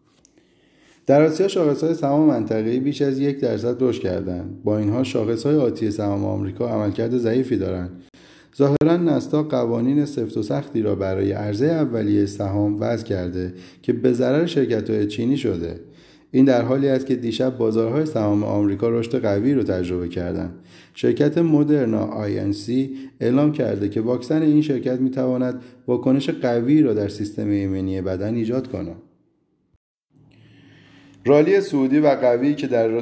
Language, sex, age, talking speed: Persian, male, 30-49, 145 wpm